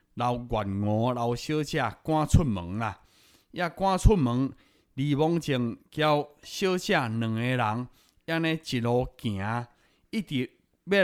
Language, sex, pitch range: Chinese, male, 115-160 Hz